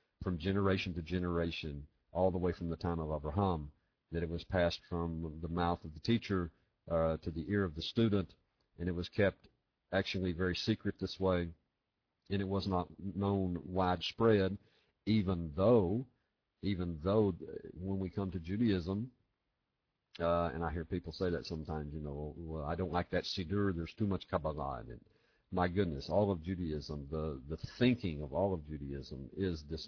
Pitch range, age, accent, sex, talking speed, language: 80-100 Hz, 50-69, American, male, 180 wpm, English